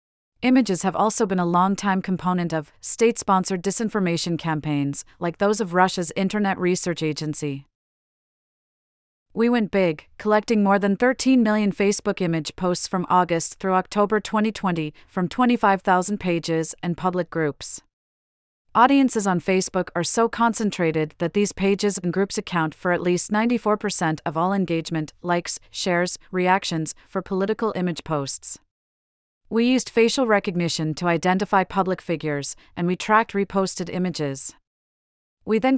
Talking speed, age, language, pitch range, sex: 135 wpm, 30-49, English, 165-205 Hz, female